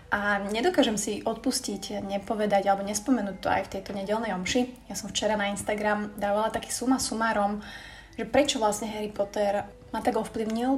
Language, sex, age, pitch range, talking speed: Slovak, female, 20-39, 200-230 Hz, 165 wpm